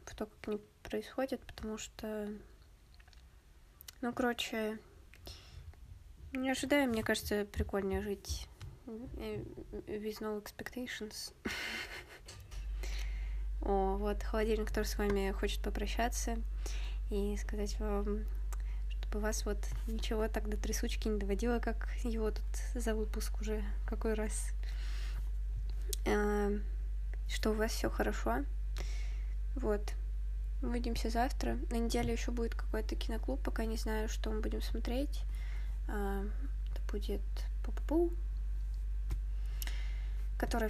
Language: Russian